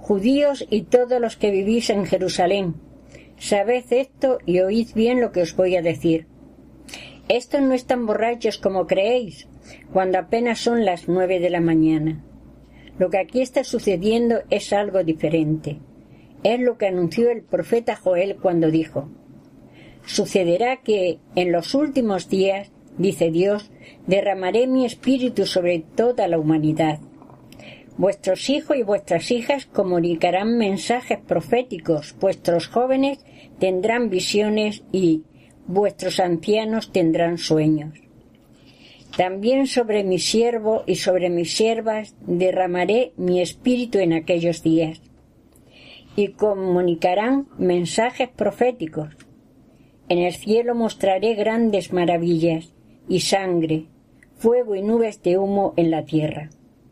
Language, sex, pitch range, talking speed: Spanish, female, 175-230 Hz, 120 wpm